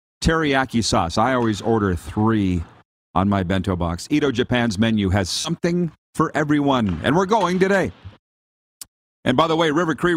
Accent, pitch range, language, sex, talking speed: American, 105-160 Hz, English, male, 160 wpm